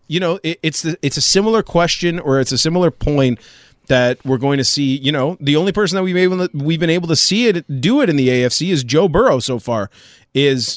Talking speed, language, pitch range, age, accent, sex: 250 wpm, English, 125-160 Hz, 30-49, American, male